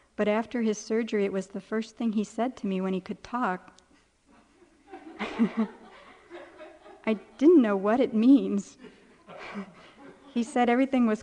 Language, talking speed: English, 145 wpm